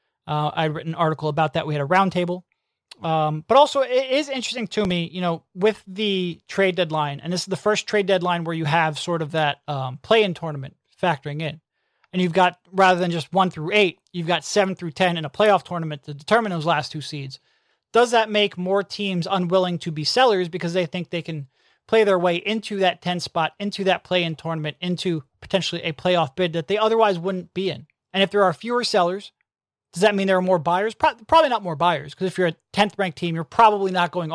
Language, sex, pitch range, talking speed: English, male, 160-200 Hz, 230 wpm